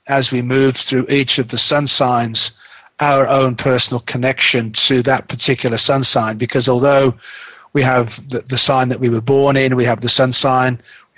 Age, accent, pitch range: 40-59, British, 120-135 Hz